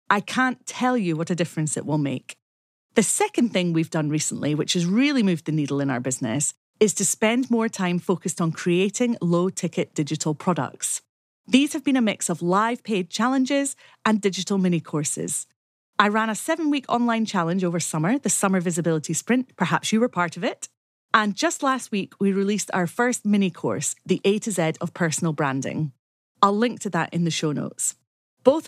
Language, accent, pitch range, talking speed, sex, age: English, British, 170-240 Hz, 190 wpm, female, 30-49